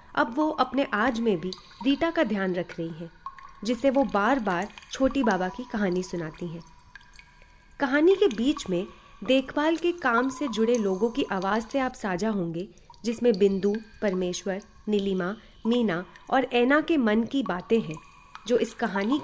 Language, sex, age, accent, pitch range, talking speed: Hindi, female, 30-49, native, 195-320 Hz, 165 wpm